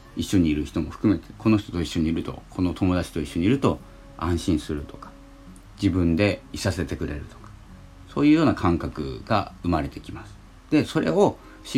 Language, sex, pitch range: Japanese, male, 75-105 Hz